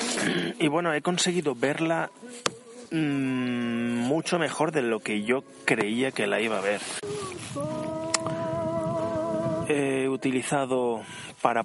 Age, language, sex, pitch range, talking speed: 20-39, Spanish, male, 110-155 Hz, 110 wpm